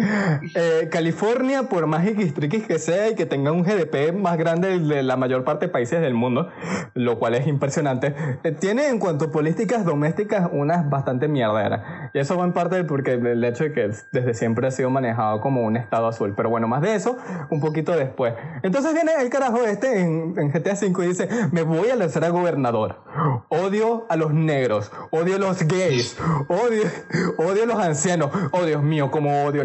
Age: 20-39